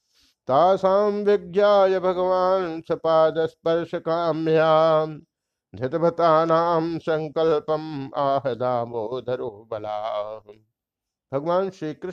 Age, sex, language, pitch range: 50-69, male, Hindi, 120-165 Hz